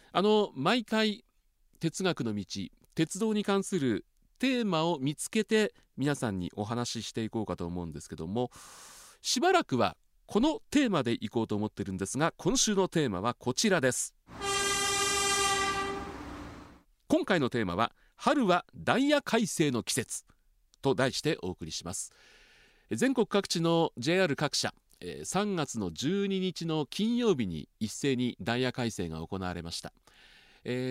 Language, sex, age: Japanese, male, 40-59